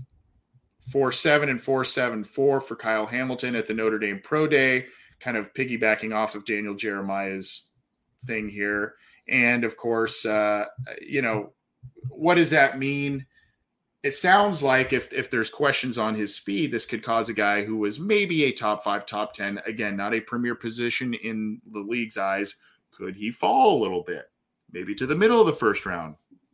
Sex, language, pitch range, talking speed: male, English, 110-135 Hz, 180 wpm